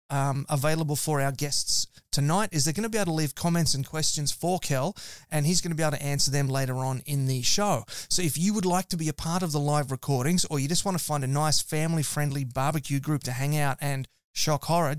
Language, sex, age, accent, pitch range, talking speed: English, male, 30-49, Australian, 135-165 Hz, 250 wpm